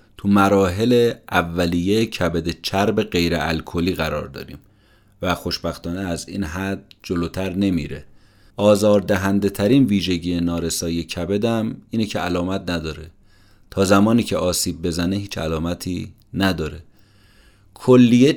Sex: male